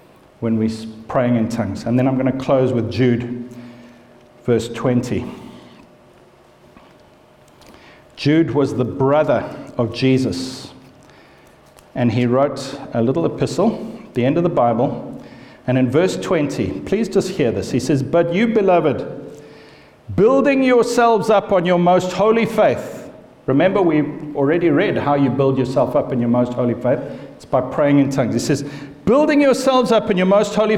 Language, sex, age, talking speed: English, male, 50-69, 160 wpm